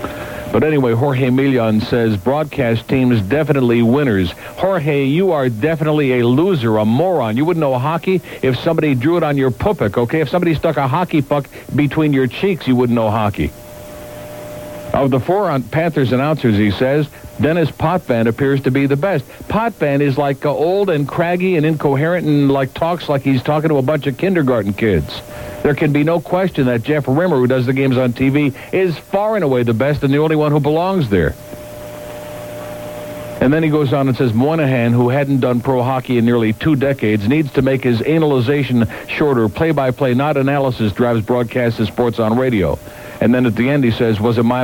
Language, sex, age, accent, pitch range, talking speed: English, male, 60-79, American, 120-150 Hz, 200 wpm